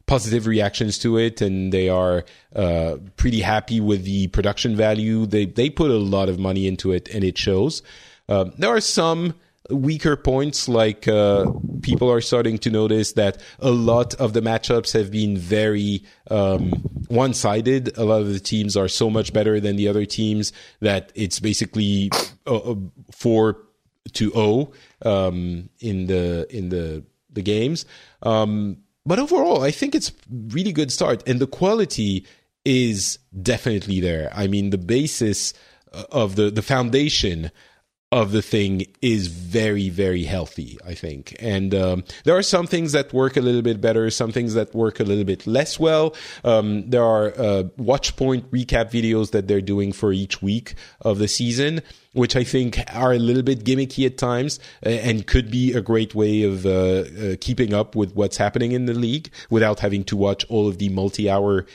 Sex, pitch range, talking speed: male, 100-125 Hz, 180 wpm